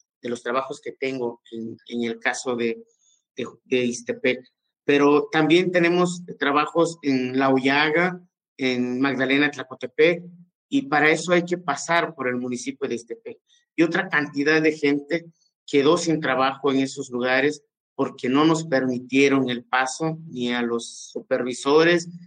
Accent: Mexican